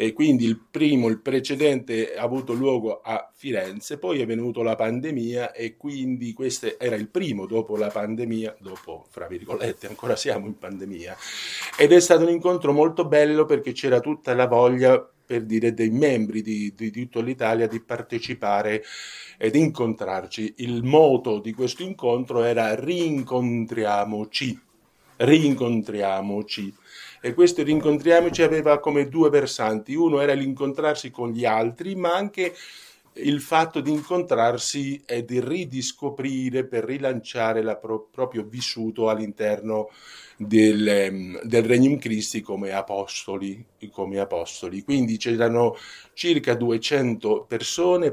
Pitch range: 110-140 Hz